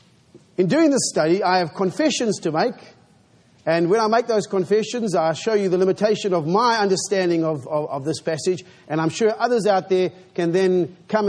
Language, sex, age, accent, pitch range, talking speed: English, male, 40-59, Australian, 180-245 Hz, 195 wpm